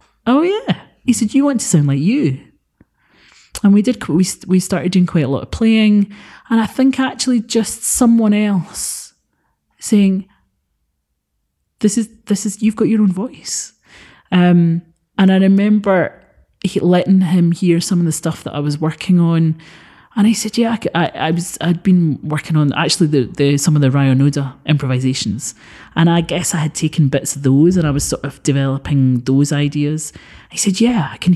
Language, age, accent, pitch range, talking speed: English, 30-49, British, 155-210 Hz, 185 wpm